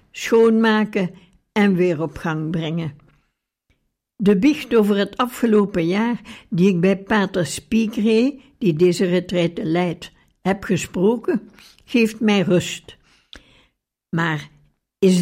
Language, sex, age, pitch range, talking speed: Dutch, female, 60-79, 175-220 Hz, 115 wpm